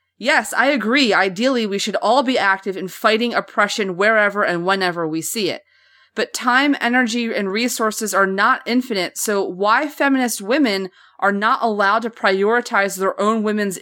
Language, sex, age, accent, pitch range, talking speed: English, female, 30-49, American, 185-245 Hz, 165 wpm